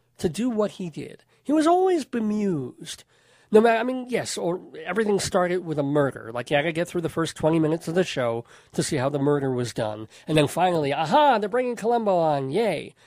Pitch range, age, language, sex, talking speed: 135-195 Hz, 40-59, English, male, 225 wpm